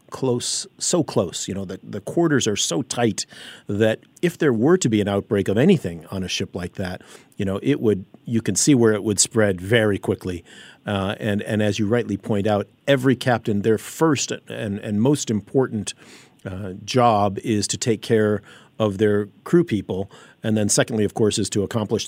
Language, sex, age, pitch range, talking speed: English, male, 50-69, 100-120 Hz, 200 wpm